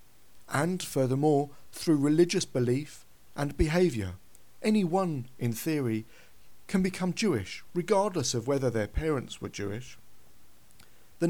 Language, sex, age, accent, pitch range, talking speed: English, male, 40-59, British, 120-165 Hz, 110 wpm